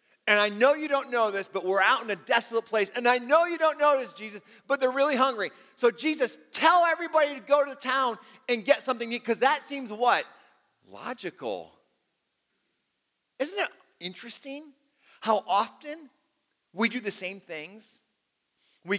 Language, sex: English, male